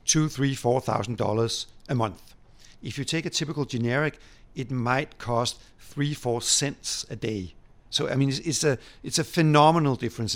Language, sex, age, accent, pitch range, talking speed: English, male, 50-69, Danish, 115-140 Hz, 180 wpm